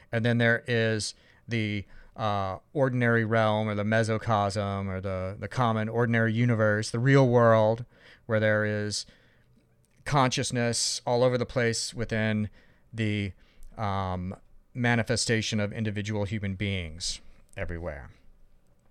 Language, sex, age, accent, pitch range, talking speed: English, male, 40-59, American, 100-120 Hz, 115 wpm